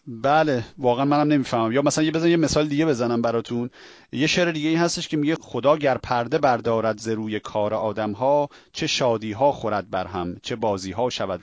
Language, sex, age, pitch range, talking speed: Persian, male, 40-59, 110-155 Hz, 205 wpm